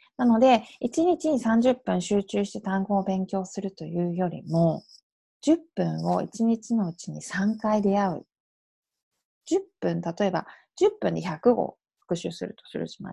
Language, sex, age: Japanese, female, 20-39